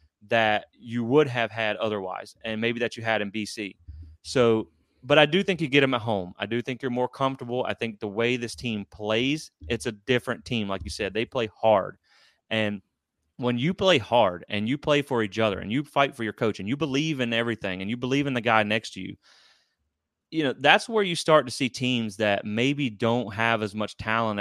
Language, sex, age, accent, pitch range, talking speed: English, male, 30-49, American, 105-130 Hz, 230 wpm